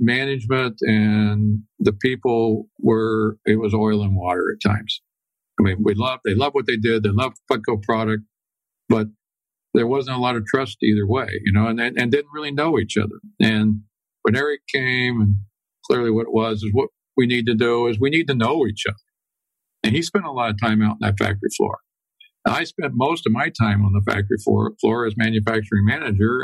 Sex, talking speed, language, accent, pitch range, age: male, 210 wpm, English, American, 105-125 Hz, 50-69